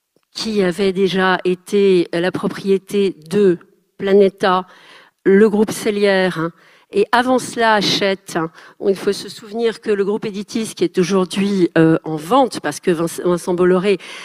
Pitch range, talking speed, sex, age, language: 185-225 Hz, 135 wpm, female, 50-69, French